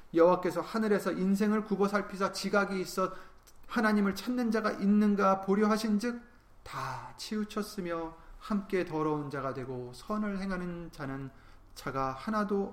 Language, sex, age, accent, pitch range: Korean, male, 30-49, native, 140-205 Hz